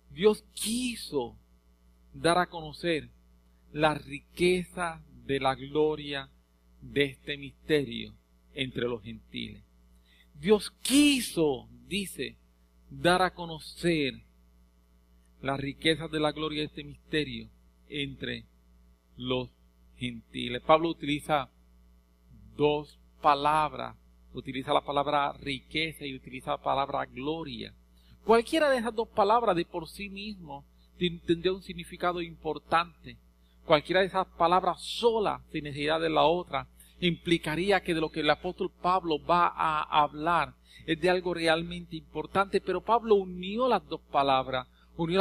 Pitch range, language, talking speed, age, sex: 115-175 Hz, English, 120 wpm, 50-69, male